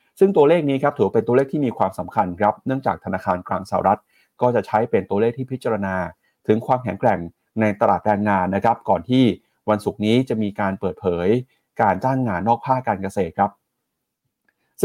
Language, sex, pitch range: Thai, male, 100-130 Hz